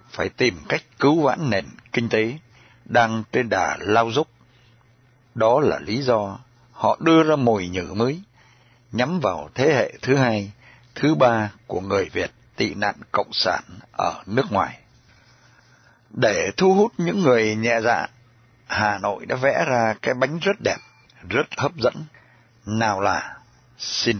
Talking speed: 155 wpm